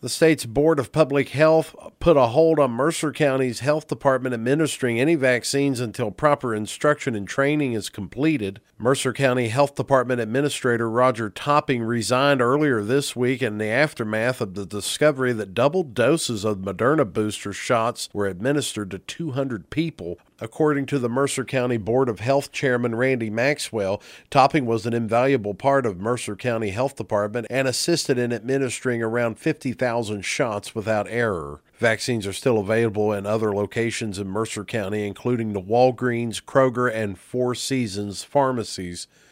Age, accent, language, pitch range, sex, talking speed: 40-59, American, English, 105-140 Hz, male, 155 wpm